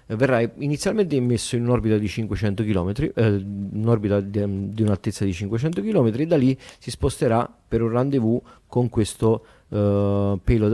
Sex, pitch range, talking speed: male, 105-120 Hz, 160 wpm